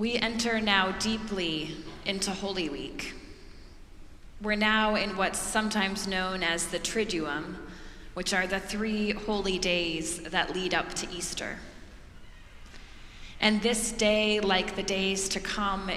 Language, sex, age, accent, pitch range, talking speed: English, female, 20-39, American, 170-200 Hz, 130 wpm